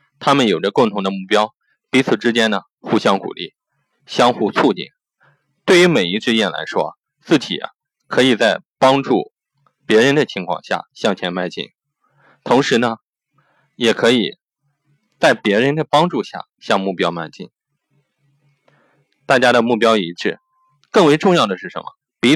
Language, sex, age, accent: Chinese, male, 20-39, native